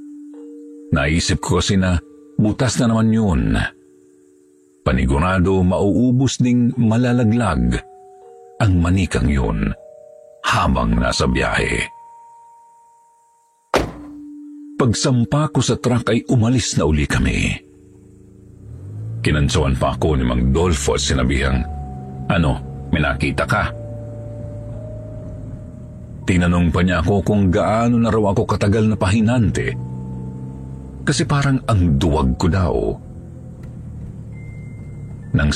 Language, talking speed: Filipino, 95 wpm